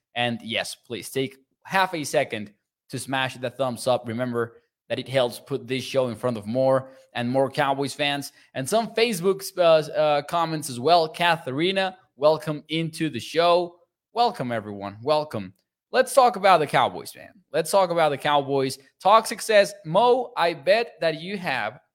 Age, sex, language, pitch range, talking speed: 20-39, male, English, 130-170 Hz, 170 wpm